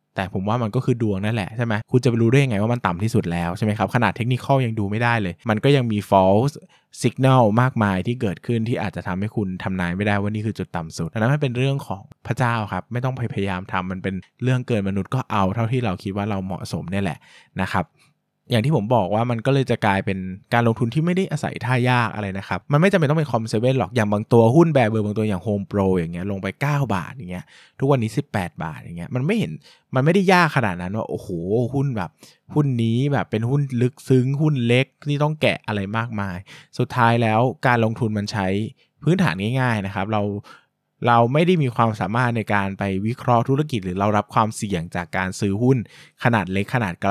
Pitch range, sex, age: 100-130 Hz, male, 20-39